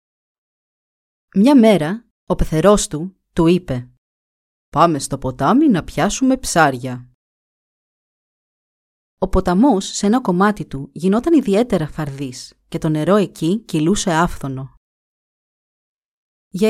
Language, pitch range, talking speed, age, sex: Greek, 155-215 Hz, 105 wpm, 30-49, female